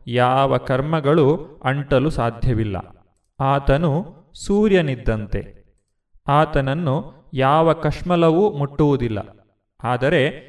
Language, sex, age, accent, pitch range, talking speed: Kannada, male, 30-49, native, 125-155 Hz, 65 wpm